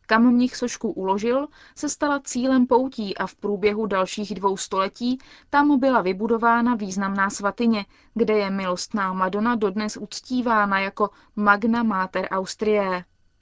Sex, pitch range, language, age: female, 195-235 Hz, Czech, 20-39